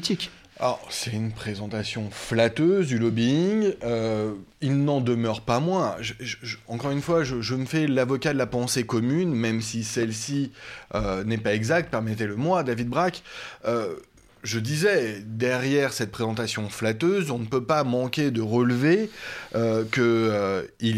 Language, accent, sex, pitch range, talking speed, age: French, French, male, 115-150 Hz, 155 wpm, 20-39